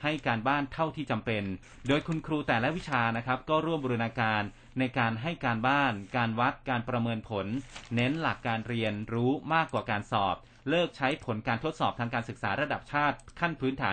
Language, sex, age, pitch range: Thai, male, 30-49, 115-135 Hz